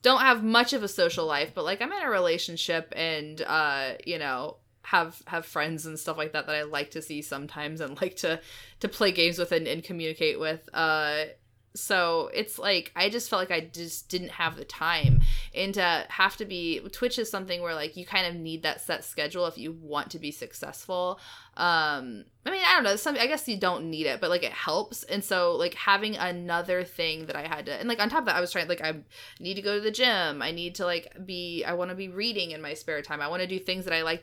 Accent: American